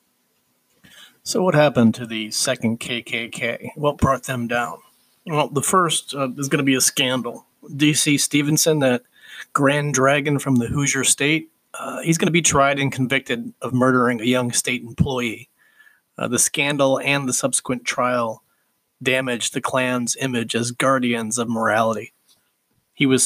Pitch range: 125-150 Hz